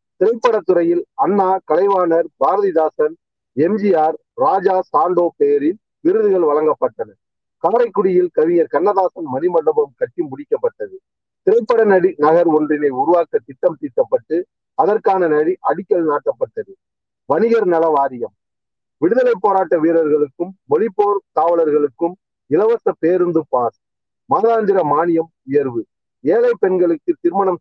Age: 40-59